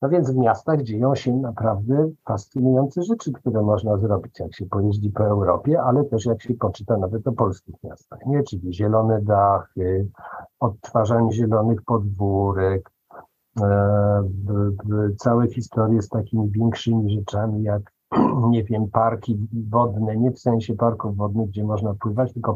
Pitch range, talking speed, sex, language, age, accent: 105-120 Hz, 150 wpm, male, Polish, 50-69, native